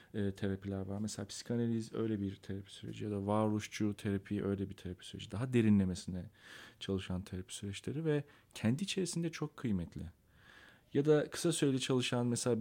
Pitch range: 100-140 Hz